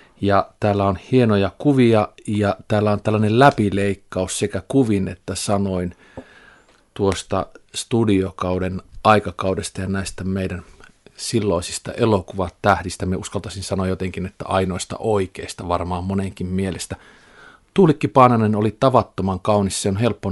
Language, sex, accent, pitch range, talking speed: Finnish, male, native, 90-105 Hz, 120 wpm